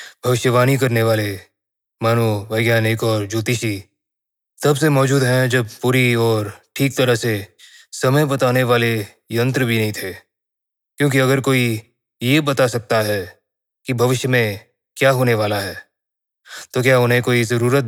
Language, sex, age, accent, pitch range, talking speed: Hindi, male, 20-39, native, 110-135 Hz, 140 wpm